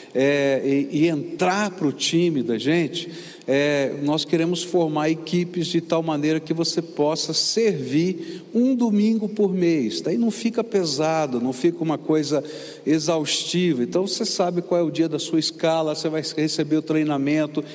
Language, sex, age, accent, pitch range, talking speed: Portuguese, male, 60-79, Brazilian, 145-185 Hz, 160 wpm